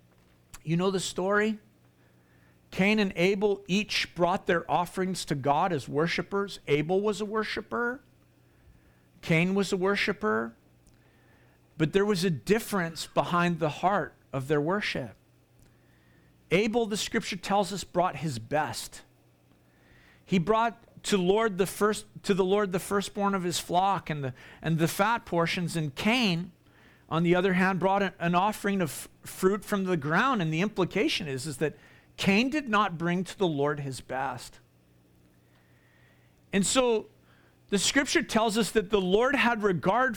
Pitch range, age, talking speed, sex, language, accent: 150-210 Hz, 50-69, 145 wpm, male, English, American